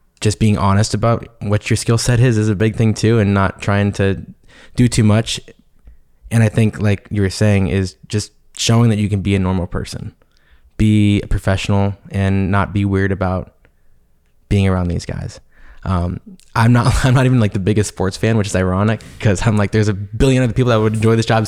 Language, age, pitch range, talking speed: English, 20-39, 95-110 Hz, 215 wpm